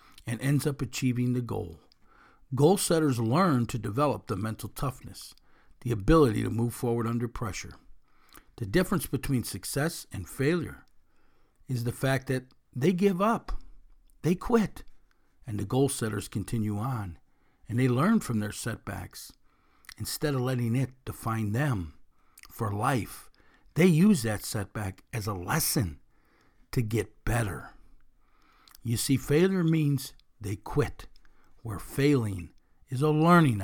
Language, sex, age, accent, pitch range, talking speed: English, male, 60-79, American, 105-150 Hz, 135 wpm